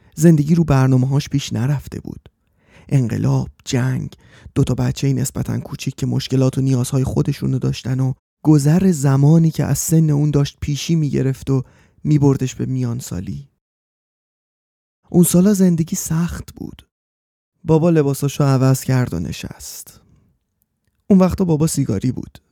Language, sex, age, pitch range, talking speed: Persian, male, 30-49, 125-155 Hz, 135 wpm